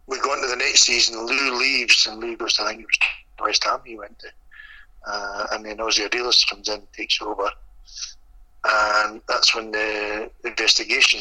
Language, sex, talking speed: English, male, 195 wpm